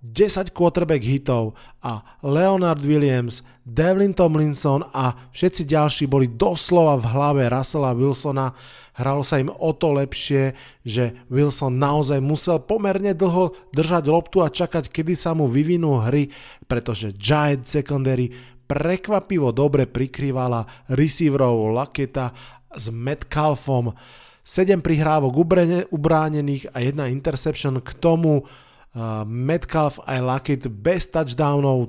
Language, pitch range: Slovak, 125-155 Hz